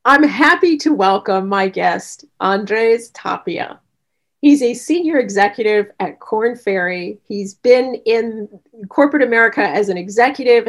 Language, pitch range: English, 200-270 Hz